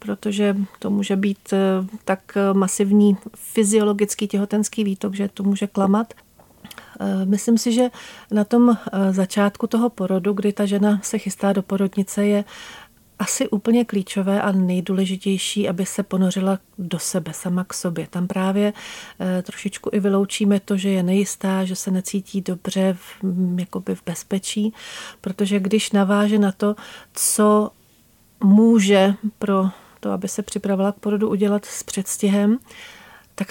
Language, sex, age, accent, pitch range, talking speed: Czech, female, 40-59, native, 190-205 Hz, 140 wpm